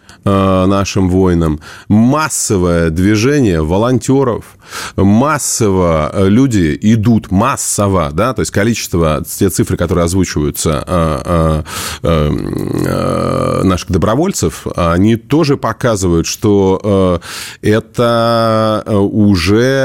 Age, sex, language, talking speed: 20-39, male, Russian, 75 wpm